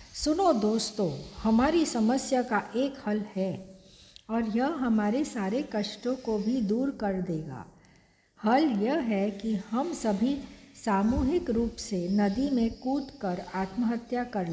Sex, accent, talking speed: female, native, 130 wpm